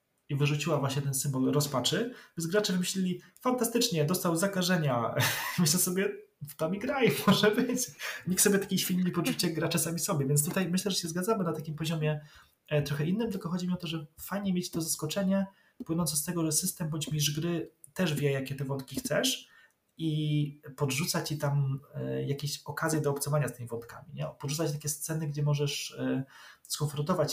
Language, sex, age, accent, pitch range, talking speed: Polish, male, 30-49, native, 140-170 Hz, 175 wpm